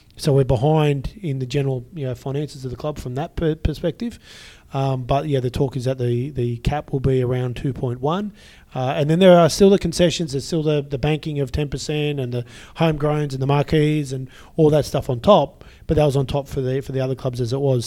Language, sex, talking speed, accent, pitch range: English, male, 240 wpm, Australian, 130-155 Hz